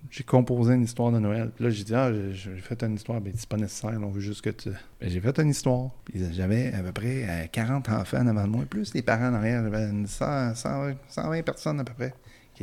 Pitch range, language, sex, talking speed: 100-115 Hz, French, male, 260 wpm